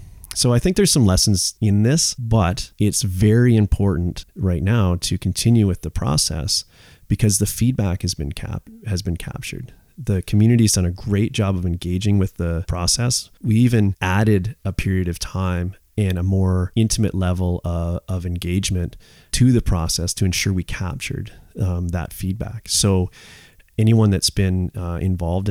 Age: 30-49